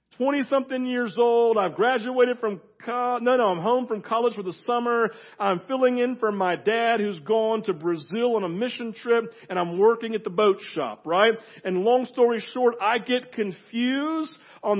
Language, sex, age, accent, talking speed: English, male, 50-69, American, 185 wpm